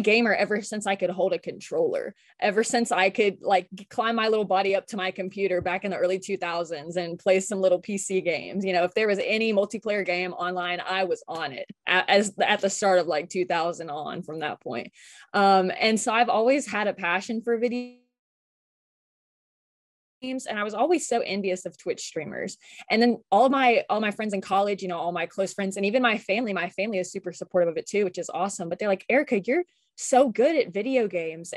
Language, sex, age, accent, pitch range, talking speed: English, female, 20-39, American, 190-260 Hz, 225 wpm